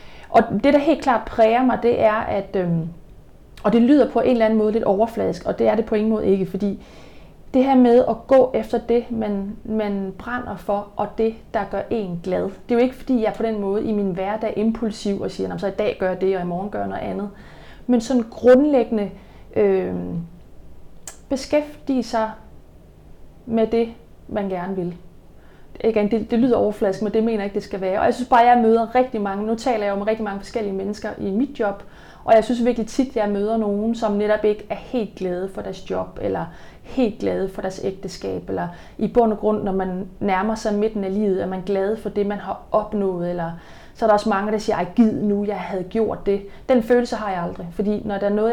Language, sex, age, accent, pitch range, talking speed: English, female, 30-49, Danish, 195-230 Hz, 235 wpm